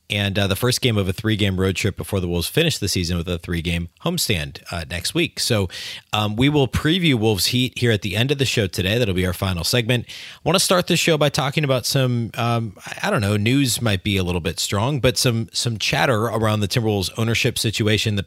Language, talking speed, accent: English, 245 wpm, American